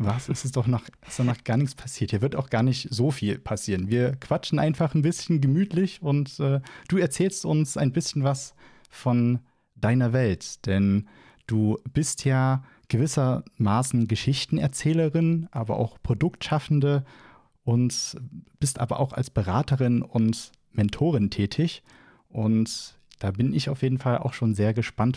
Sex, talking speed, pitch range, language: male, 155 wpm, 115-145 Hz, German